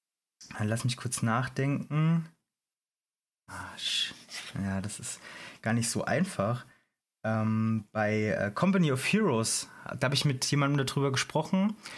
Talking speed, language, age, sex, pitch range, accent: 115 wpm, German, 30-49, male, 120-160 Hz, German